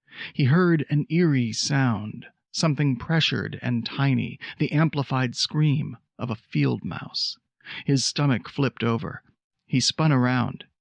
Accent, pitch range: American, 120-145 Hz